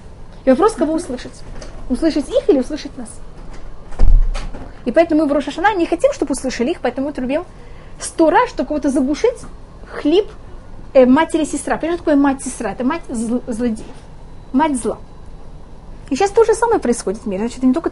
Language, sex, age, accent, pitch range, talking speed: Russian, female, 20-39, native, 235-310 Hz, 165 wpm